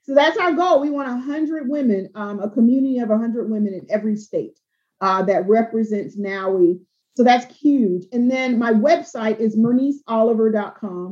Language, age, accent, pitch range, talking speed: English, 40-59, American, 205-245 Hz, 160 wpm